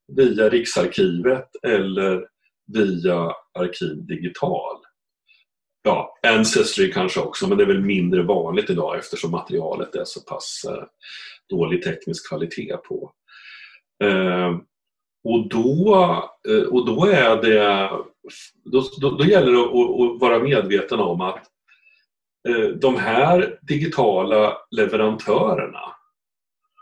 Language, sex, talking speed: Swedish, male, 90 wpm